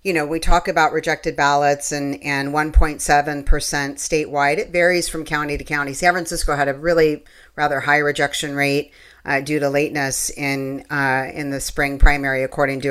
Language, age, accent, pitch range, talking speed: English, 40-59, American, 140-160 Hz, 175 wpm